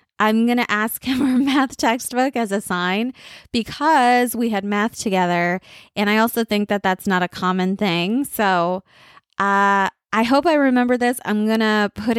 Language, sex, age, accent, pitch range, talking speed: English, female, 20-39, American, 185-235 Hz, 180 wpm